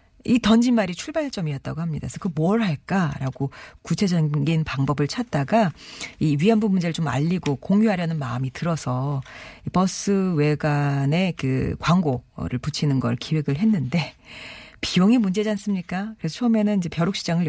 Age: 40-59